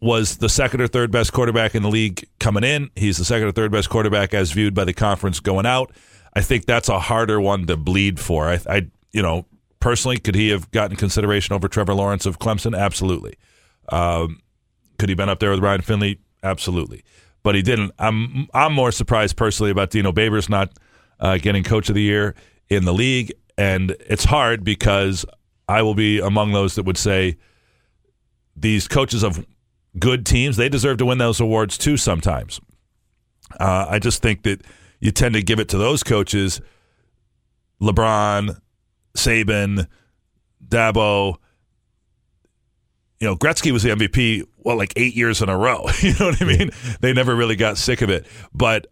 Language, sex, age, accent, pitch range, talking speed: English, male, 40-59, American, 100-115 Hz, 185 wpm